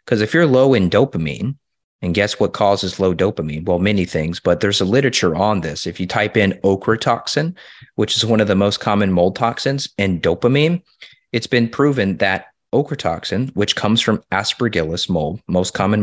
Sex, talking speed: male, 190 wpm